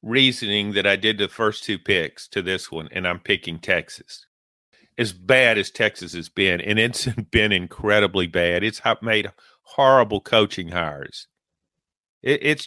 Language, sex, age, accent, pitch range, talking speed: English, male, 50-69, American, 95-125 Hz, 150 wpm